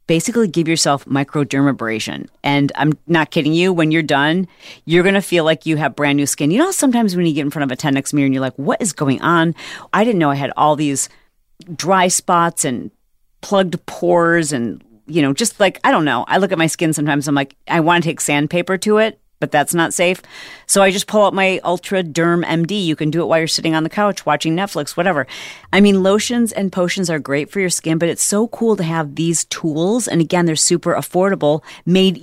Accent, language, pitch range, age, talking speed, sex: American, English, 150-195 Hz, 40-59, 235 wpm, female